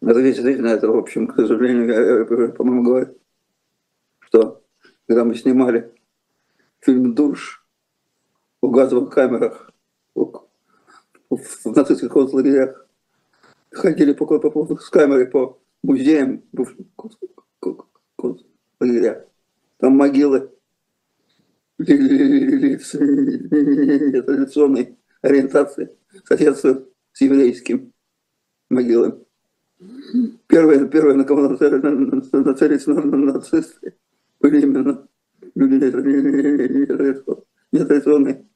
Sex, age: male, 50-69